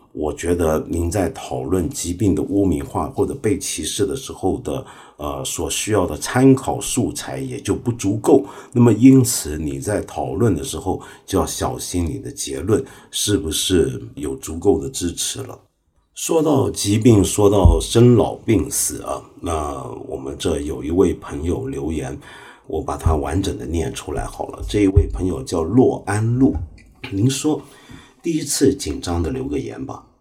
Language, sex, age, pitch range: Chinese, male, 50-69, 90-130 Hz